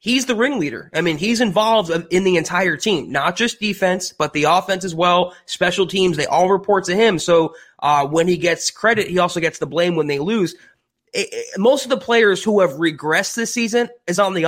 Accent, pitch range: American, 165-215 Hz